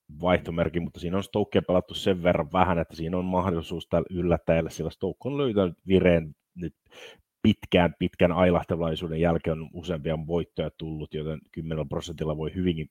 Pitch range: 80-95 Hz